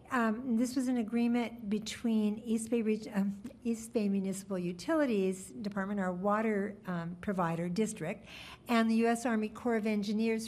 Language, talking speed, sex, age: English, 145 wpm, female, 60-79